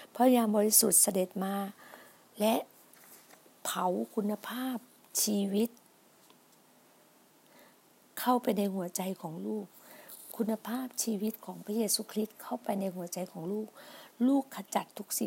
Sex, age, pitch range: female, 60-79, 190-235 Hz